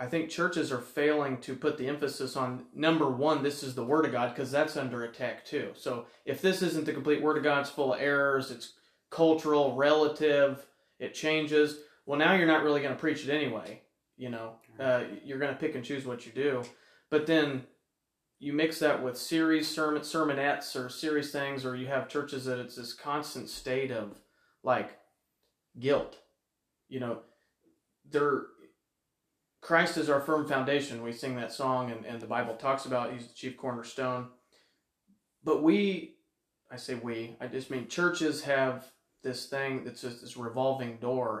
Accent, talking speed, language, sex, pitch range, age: American, 185 wpm, English, male, 130-155 Hz, 30-49